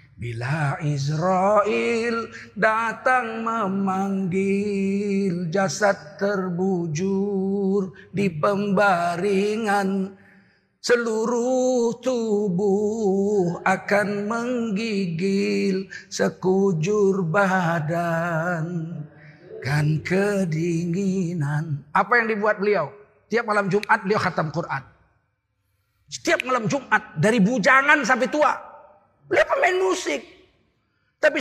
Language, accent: Indonesian, native